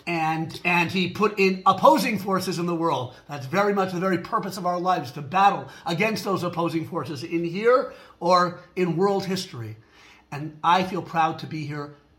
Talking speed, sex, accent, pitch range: 185 wpm, male, American, 155-190 Hz